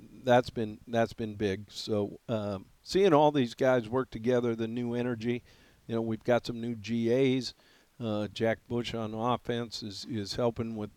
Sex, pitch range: male, 110-125 Hz